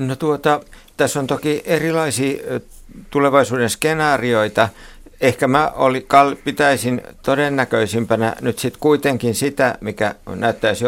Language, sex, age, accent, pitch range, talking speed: Finnish, male, 60-79, native, 100-120 Hz, 100 wpm